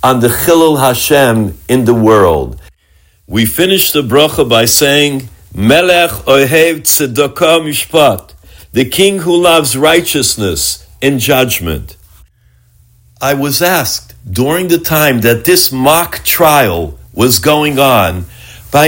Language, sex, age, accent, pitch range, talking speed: English, male, 60-79, American, 110-170 Hz, 120 wpm